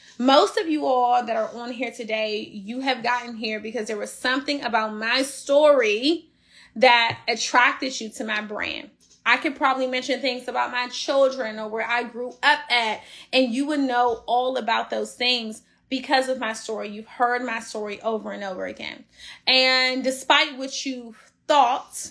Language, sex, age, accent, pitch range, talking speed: English, female, 20-39, American, 225-275 Hz, 175 wpm